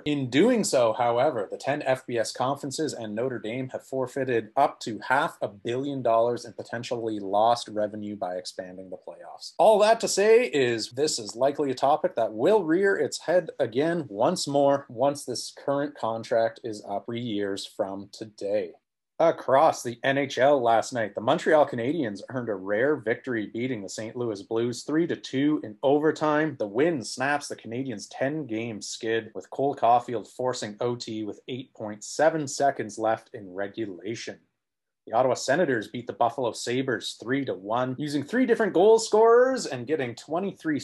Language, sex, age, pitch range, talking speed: English, male, 30-49, 115-150 Hz, 160 wpm